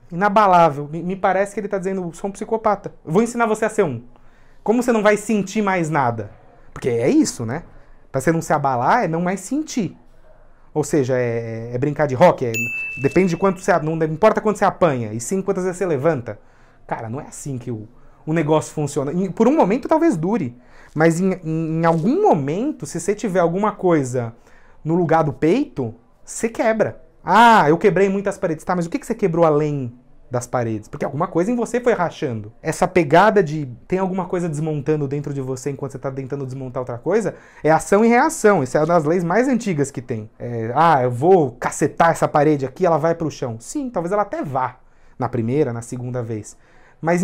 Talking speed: 205 wpm